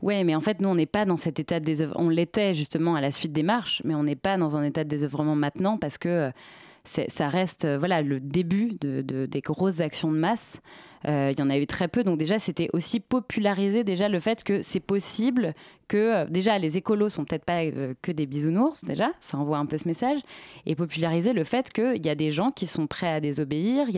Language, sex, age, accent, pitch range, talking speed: French, female, 20-39, French, 155-210 Hz, 255 wpm